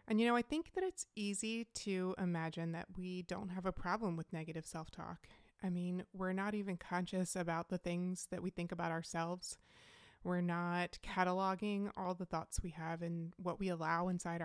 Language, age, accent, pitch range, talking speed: English, 20-39, American, 175-210 Hz, 190 wpm